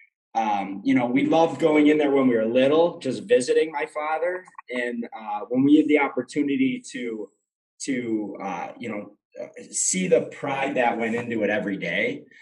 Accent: American